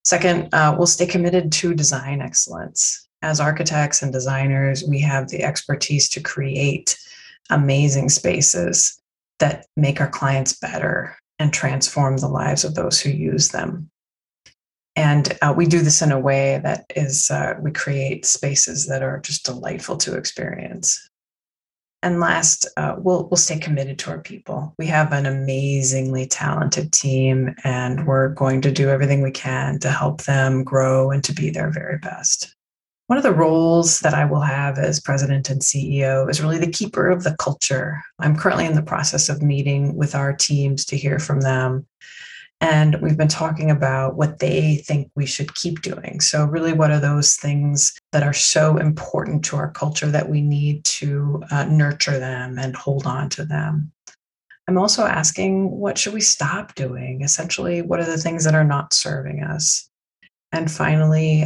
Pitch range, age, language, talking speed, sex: 135-160 Hz, 20-39, English, 175 wpm, female